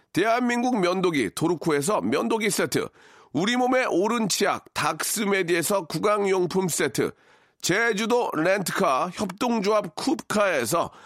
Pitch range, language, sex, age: 185-230 Hz, Korean, male, 40-59